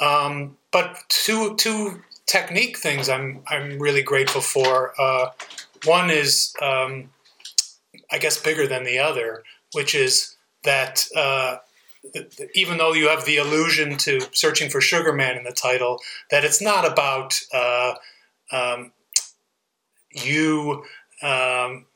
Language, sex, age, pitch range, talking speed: English, male, 30-49, 135-165 Hz, 130 wpm